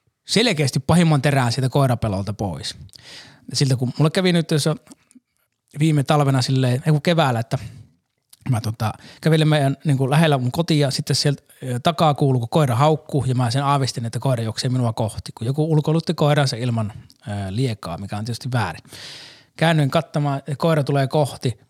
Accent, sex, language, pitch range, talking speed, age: native, male, Finnish, 120-145 Hz, 160 wpm, 20-39